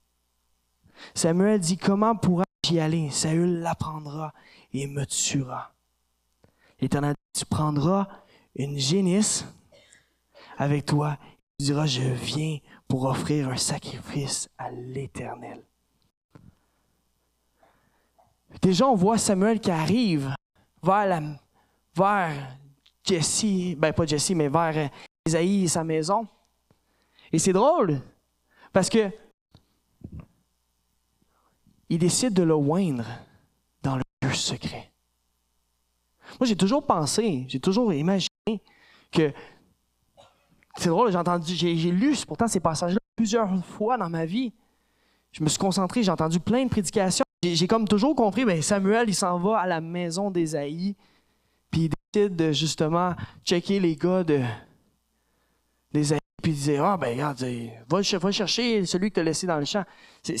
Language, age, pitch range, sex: French, 20-39, 140-200 Hz, male